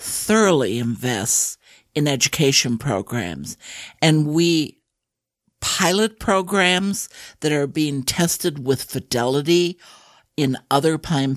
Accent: American